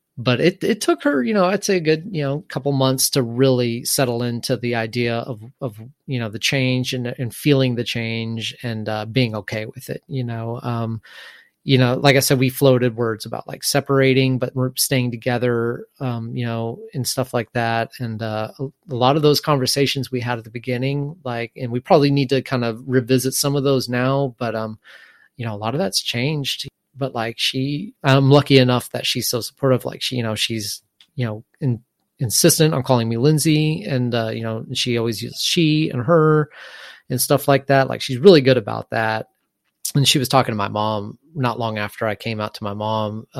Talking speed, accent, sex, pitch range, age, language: 215 wpm, American, male, 115-135 Hz, 30-49, English